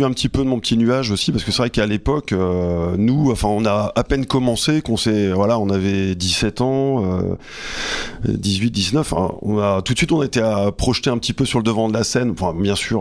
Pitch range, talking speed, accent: 100-130 Hz, 250 wpm, French